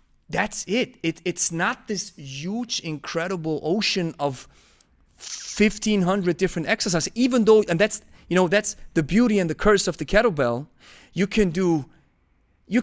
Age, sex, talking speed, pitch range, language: 30-49, male, 150 wpm, 140-200 Hz, English